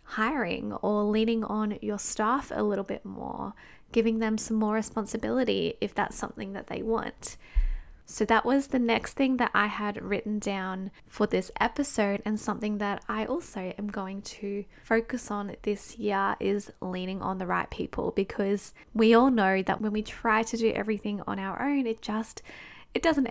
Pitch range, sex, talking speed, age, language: 205-230 Hz, female, 185 wpm, 10-29, English